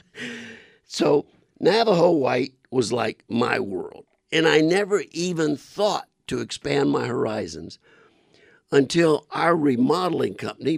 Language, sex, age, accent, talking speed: English, male, 50-69, American, 110 wpm